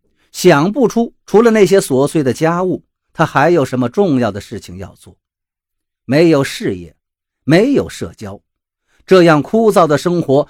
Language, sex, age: Chinese, male, 50-69